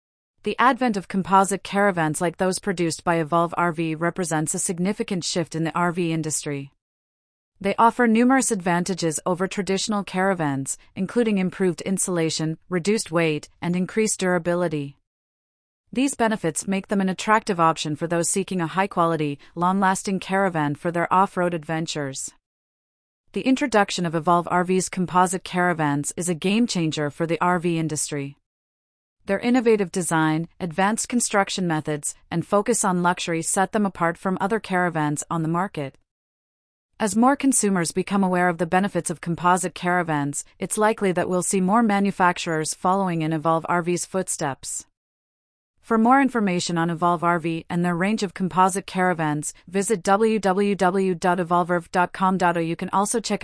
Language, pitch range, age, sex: English, 165-195 Hz, 30-49, female